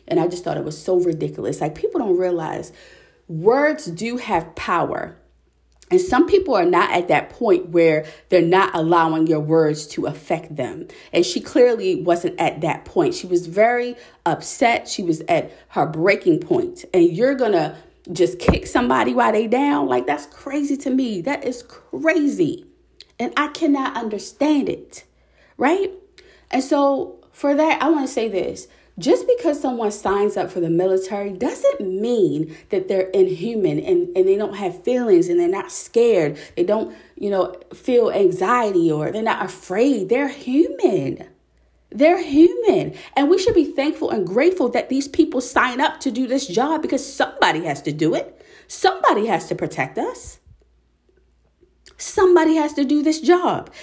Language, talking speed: English, 170 wpm